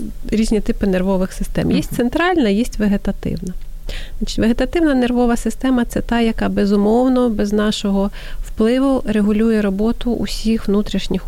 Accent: native